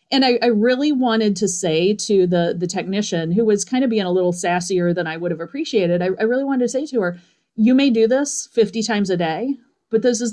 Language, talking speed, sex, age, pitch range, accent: English, 250 wpm, female, 40-59, 175-220 Hz, American